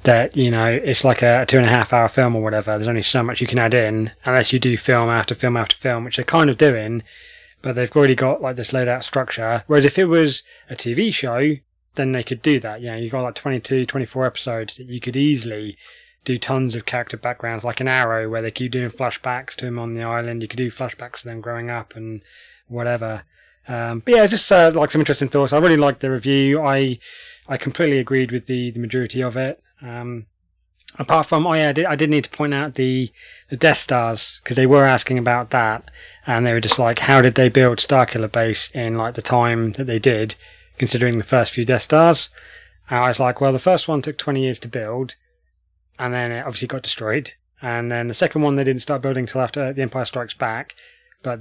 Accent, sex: British, male